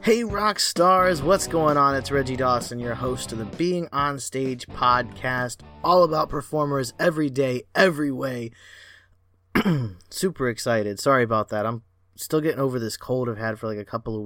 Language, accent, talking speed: English, American, 175 wpm